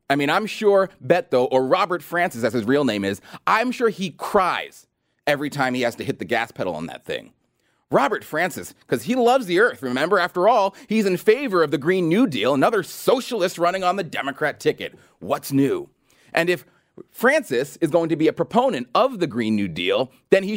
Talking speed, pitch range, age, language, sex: 210 wpm, 145-215 Hz, 30-49, English, male